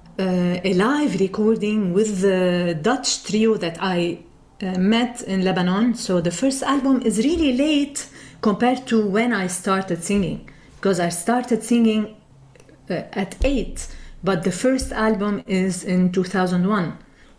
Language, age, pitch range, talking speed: English, 40-59, 185-235 Hz, 140 wpm